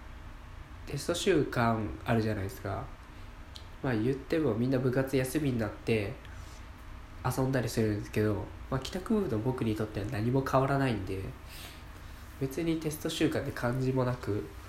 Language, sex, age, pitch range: Japanese, male, 20-39, 90-130 Hz